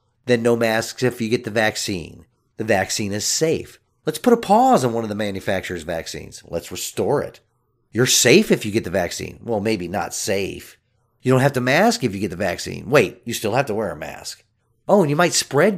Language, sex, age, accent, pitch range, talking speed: English, male, 40-59, American, 100-150 Hz, 225 wpm